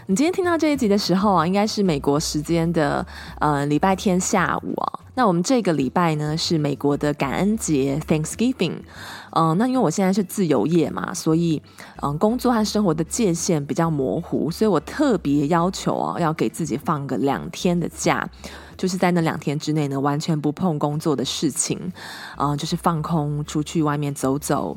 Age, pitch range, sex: 20-39, 150-195 Hz, female